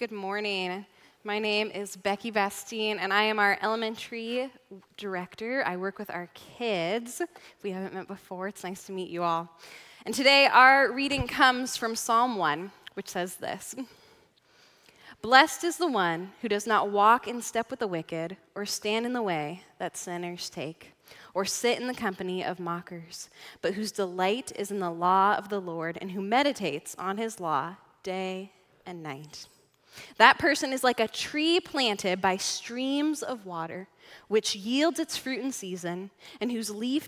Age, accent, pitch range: 10-29, American, 190-240 Hz